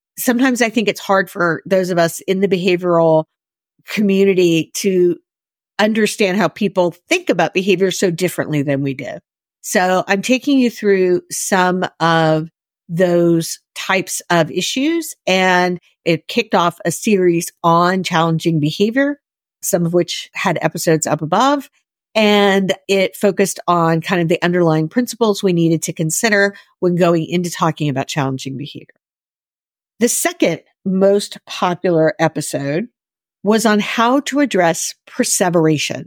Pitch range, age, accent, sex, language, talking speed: 165-205 Hz, 50-69, American, female, English, 140 wpm